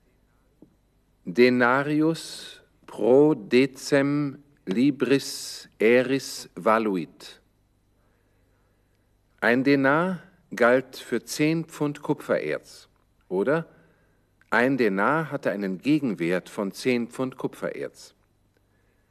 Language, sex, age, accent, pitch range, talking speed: German, male, 50-69, German, 100-145 Hz, 70 wpm